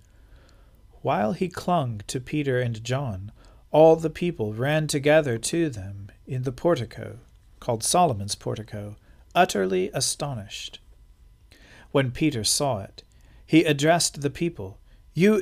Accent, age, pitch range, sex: American, 50-69, 115-165 Hz, male